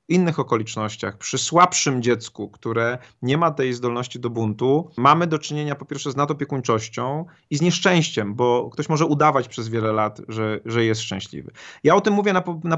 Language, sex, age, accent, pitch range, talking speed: Polish, male, 30-49, native, 120-155 Hz, 185 wpm